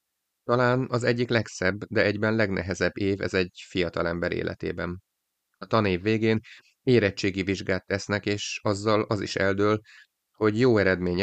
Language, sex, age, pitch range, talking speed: Hungarian, male, 30-49, 90-110 Hz, 140 wpm